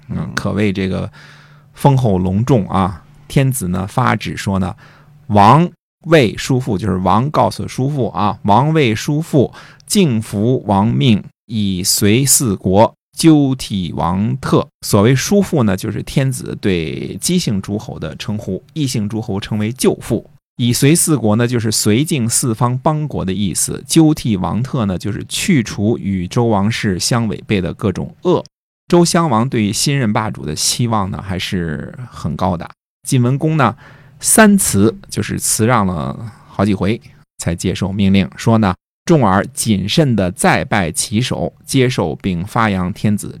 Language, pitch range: Chinese, 100-140 Hz